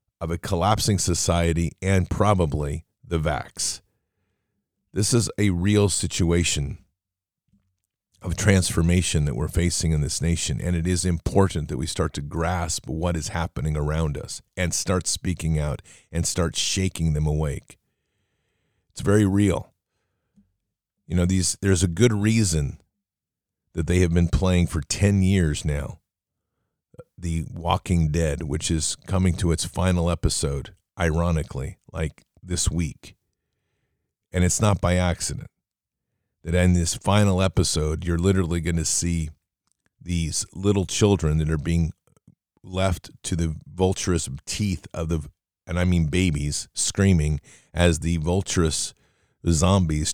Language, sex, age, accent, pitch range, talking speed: English, male, 40-59, American, 80-95 Hz, 135 wpm